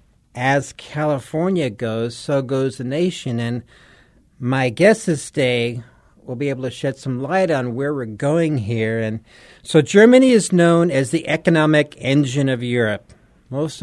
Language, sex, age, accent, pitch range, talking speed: English, male, 50-69, American, 125-150 Hz, 155 wpm